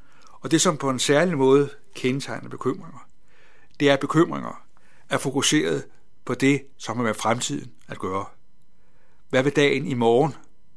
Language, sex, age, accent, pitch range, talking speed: Danish, male, 60-79, native, 130-155 Hz, 155 wpm